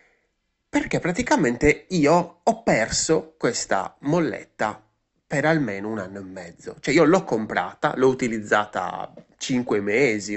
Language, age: Italian, 20-39